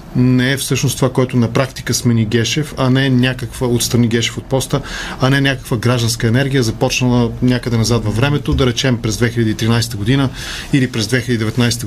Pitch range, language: 115-145 Hz, Bulgarian